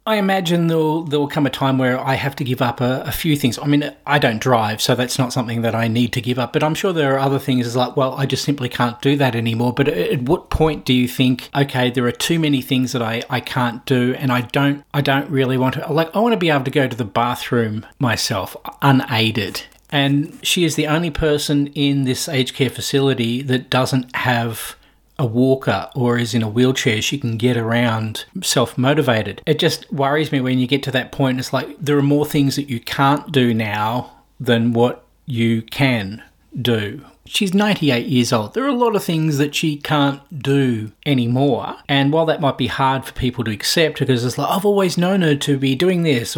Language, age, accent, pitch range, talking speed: English, 40-59, Australian, 125-145 Hz, 230 wpm